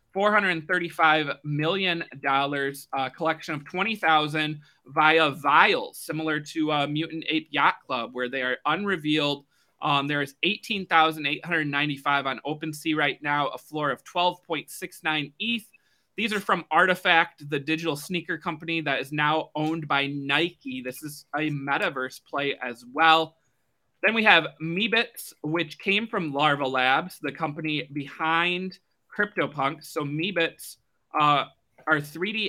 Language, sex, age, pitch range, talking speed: English, male, 20-39, 140-165 Hz, 135 wpm